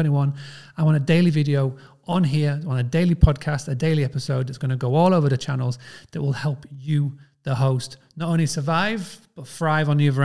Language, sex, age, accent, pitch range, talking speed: English, male, 30-49, British, 140-170 Hz, 215 wpm